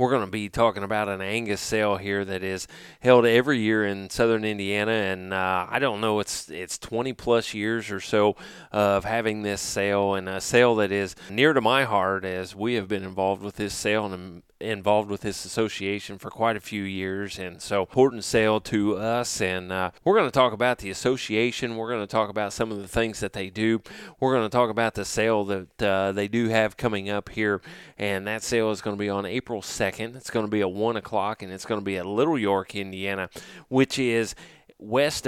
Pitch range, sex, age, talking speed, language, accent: 100-115 Hz, male, 30-49, 225 wpm, English, American